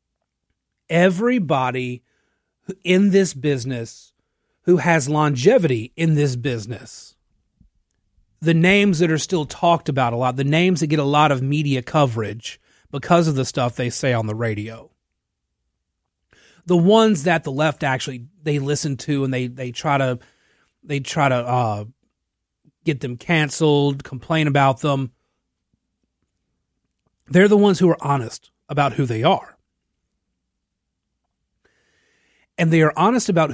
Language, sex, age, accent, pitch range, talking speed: English, male, 30-49, American, 125-165 Hz, 135 wpm